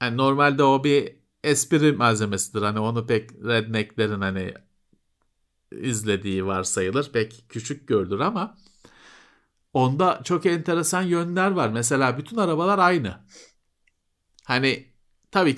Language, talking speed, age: Turkish, 105 wpm, 50-69